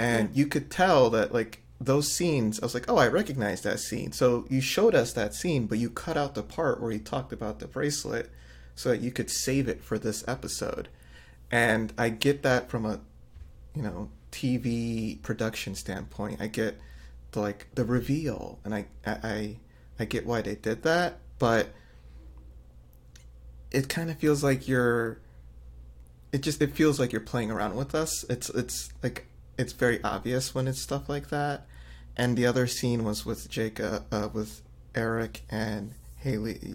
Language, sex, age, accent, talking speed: English, male, 30-49, American, 180 wpm